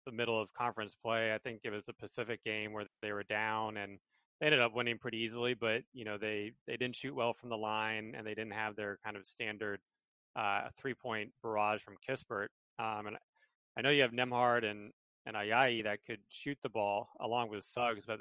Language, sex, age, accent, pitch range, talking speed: English, male, 30-49, American, 105-120 Hz, 220 wpm